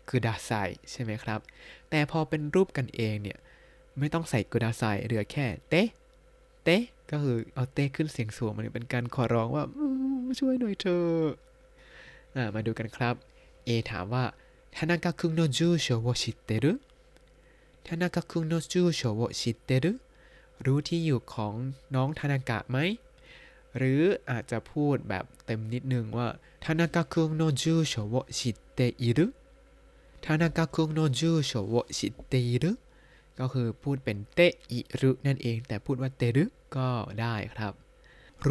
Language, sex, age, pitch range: Thai, male, 20-39, 120-165 Hz